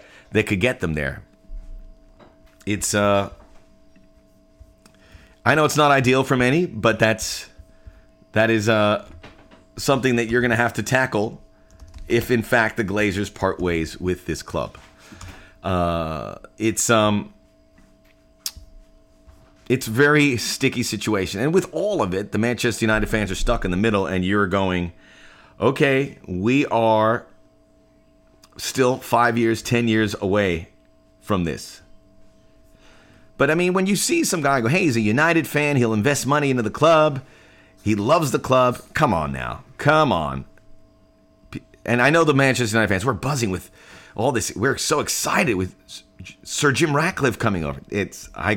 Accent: American